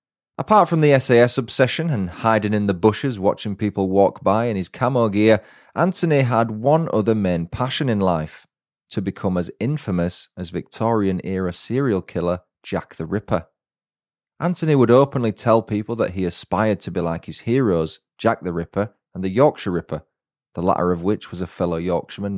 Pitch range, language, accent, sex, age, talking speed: 95-120 Hz, English, British, male, 30-49, 175 wpm